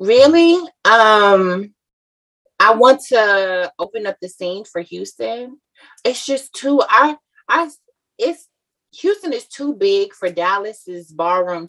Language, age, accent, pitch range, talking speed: English, 20-39, American, 165-230 Hz, 125 wpm